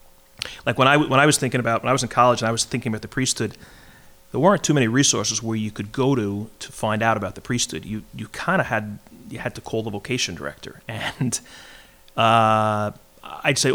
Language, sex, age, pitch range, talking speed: English, male, 30-49, 105-125 Hz, 225 wpm